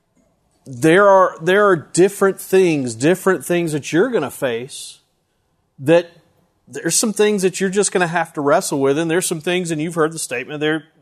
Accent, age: American, 40-59